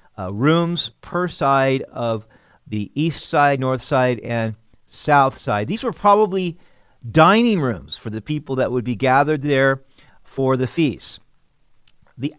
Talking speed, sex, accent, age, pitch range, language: 145 wpm, male, American, 50-69, 115-165 Hz, English